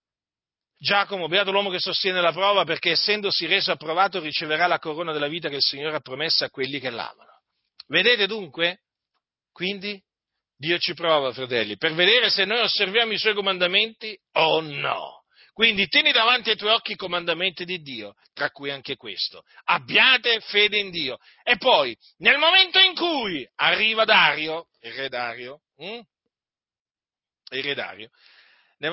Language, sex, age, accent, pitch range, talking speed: Italian, male, 40-59, native, 155-235 Hz, 160 wpm